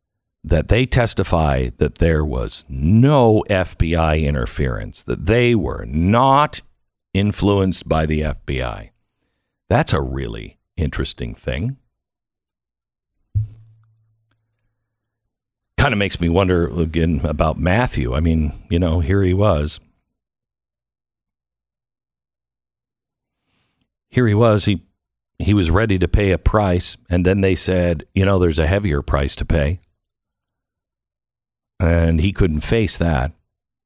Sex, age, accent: male, 50-69, American